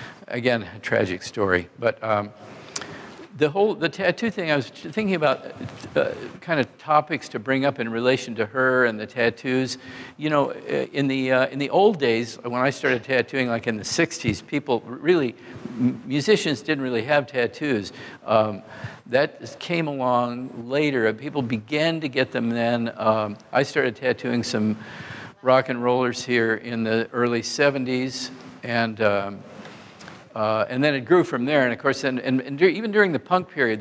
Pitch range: 115-140 Hz